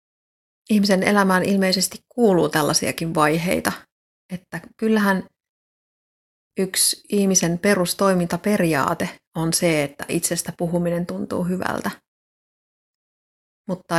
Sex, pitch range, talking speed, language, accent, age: female, 165-195 Hz, 80 wpm, Finnish, native, 30-49